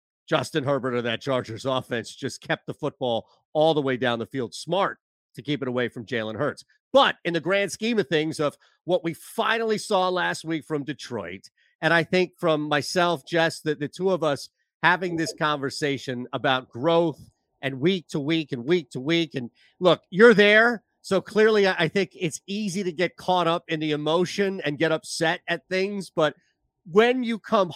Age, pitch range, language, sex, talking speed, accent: 40-59, 145-195 Hz, English, male, 195 wpm, American